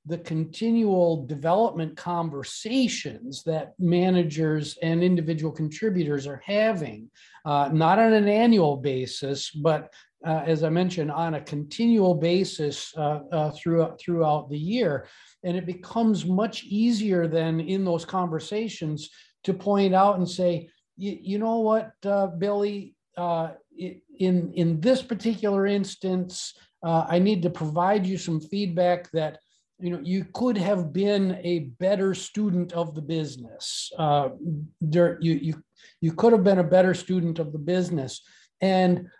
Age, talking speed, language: 50-69, 140 wpm, English